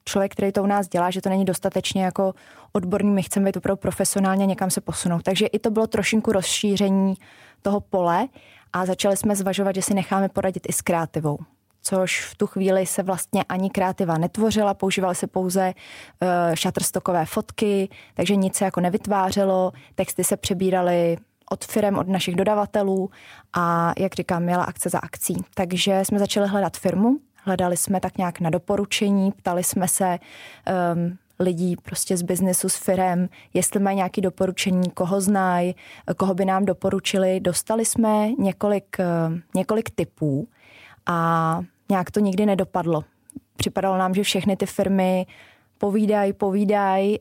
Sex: female